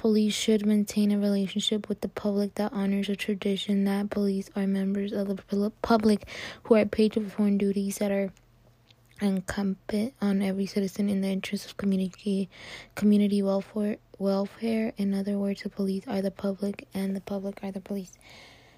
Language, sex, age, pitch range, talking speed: English, female, 20-39, 195-210 Hz, 170 wpm